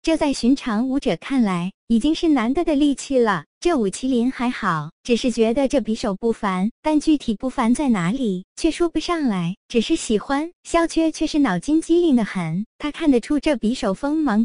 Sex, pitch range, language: male, 215-310 Hz, Chinese